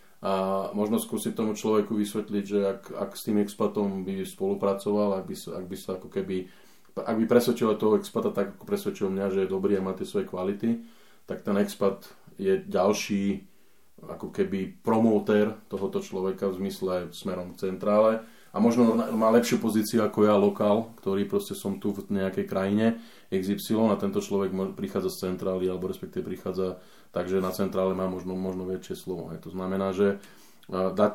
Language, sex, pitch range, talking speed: Slovak, male, 95-105 Hz, 165 wpm